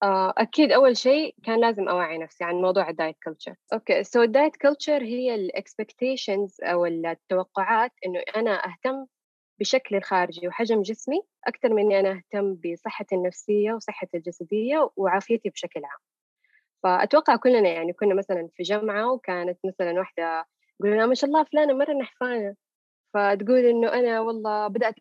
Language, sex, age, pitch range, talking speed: Arabic, female, 20-39, 185-250 Hz, 145 wpm